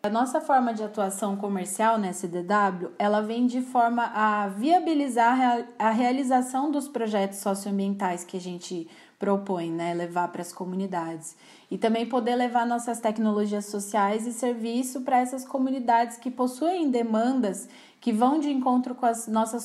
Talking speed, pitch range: 155 wpm, 205-255 Hz